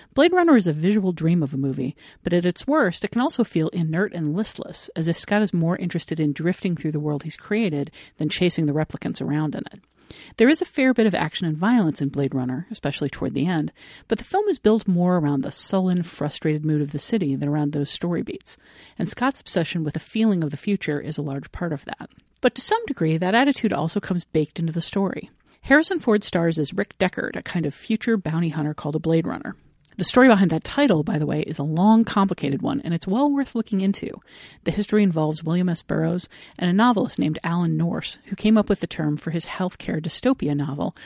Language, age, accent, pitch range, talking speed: English, 50-69, American, 155-215 Hz, 235 wpm